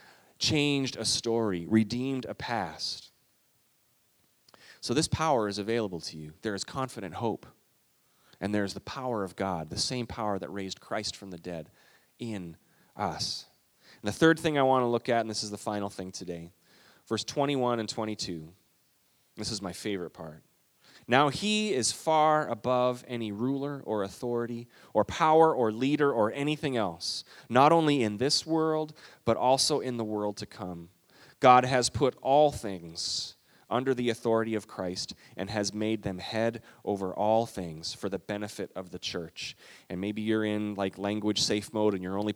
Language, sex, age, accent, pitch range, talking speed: English, male, 30-49, American, 100-130 Hz, 175 wpm